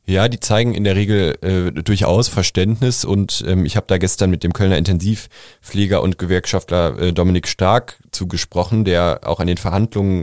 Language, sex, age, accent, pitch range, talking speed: German, male, 20-39, German, 85-100 Hz, 175 wpm